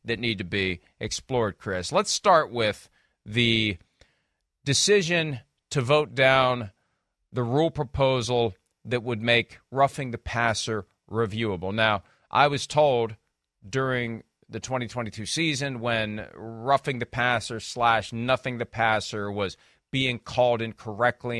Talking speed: 125 wpm